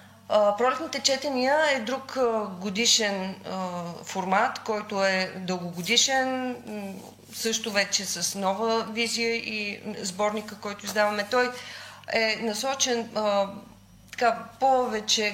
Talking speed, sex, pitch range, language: 90 wpm, female, 185-230 Hz, Bulgarian